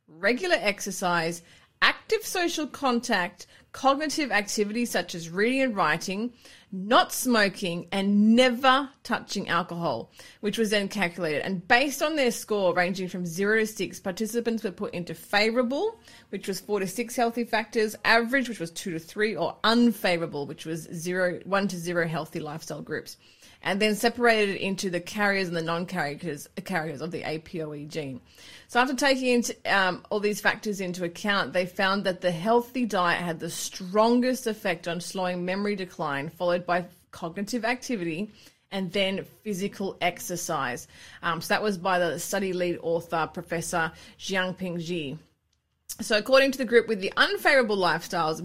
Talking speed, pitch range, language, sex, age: 160 wpm, 175-225 Hz, English, female, 30-49